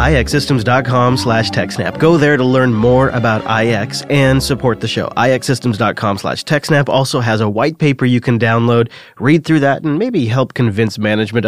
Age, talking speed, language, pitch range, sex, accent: 30-49, 170 wpm, English, 110-135 Hz, male, American